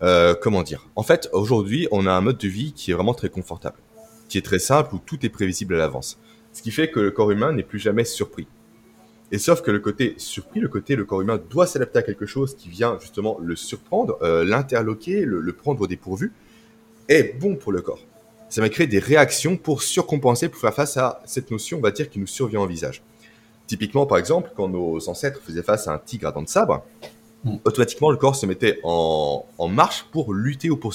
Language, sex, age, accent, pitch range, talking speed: French, male, 30-49, French, 100-140 Hz, 230 wpm